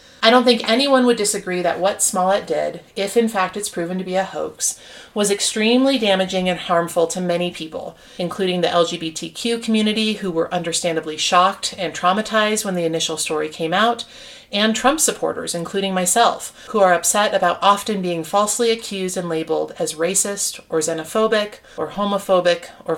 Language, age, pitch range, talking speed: English, 30-49, 170-220 Hz, 170 wpm